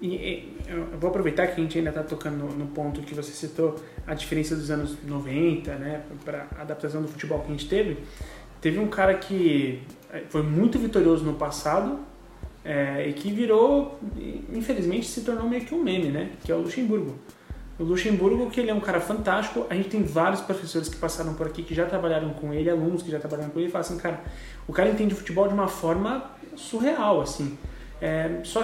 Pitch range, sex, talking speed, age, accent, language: 155-210 Hz, male, 210 wpm, 20-39, Brazilian, Portuguese